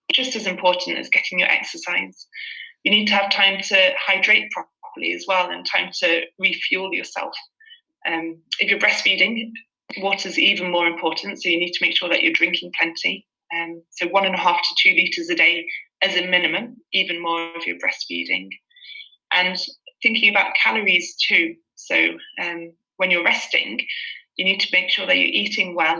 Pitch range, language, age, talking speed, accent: 170-280 Hz, English, 20-39, 180 wpm, British